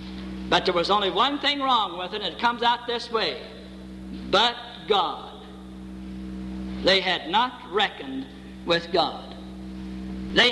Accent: American